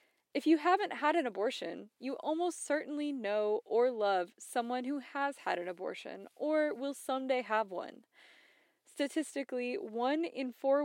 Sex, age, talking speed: female, 20-39, 150 wpm